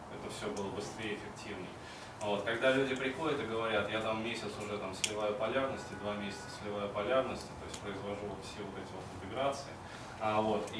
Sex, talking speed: male, 190 wpm